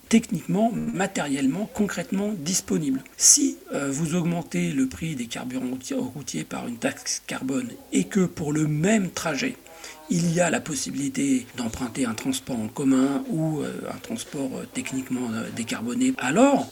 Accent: French